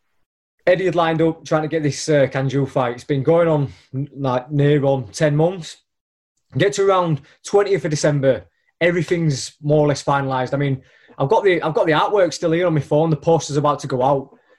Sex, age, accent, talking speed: male, 20-39, British, 215 wpm